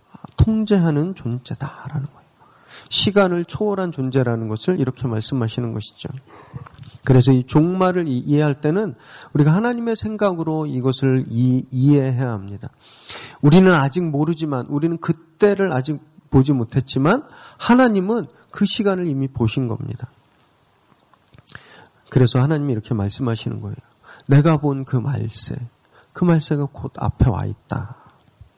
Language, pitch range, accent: Korean, 125-185 Hz, native